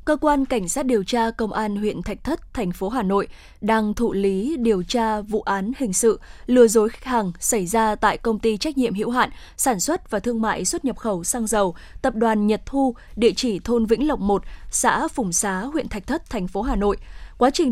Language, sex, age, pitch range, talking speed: Vietnamese, female, 10-29, 215-260 Hz, 235 wpm